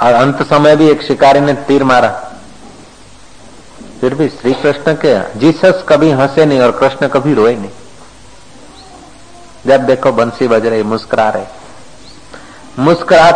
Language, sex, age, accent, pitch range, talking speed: Hindi, male, 50-69, native, 130-165 Hz, 135 wpm